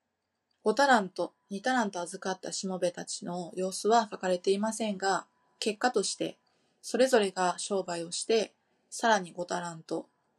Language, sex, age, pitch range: Japanese, female, 20-39, 180-225 Hz